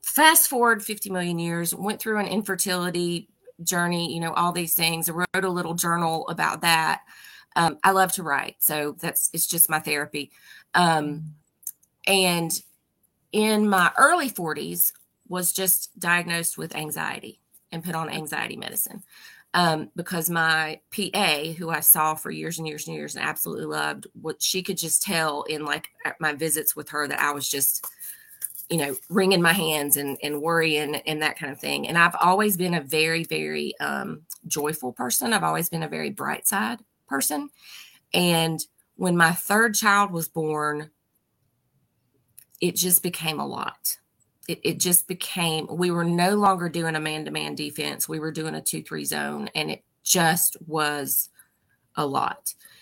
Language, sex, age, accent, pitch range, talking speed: English, female, 20-39, American, 150-180 Hz, 165 wpm